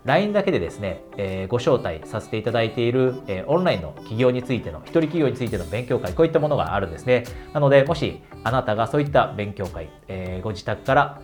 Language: Japanese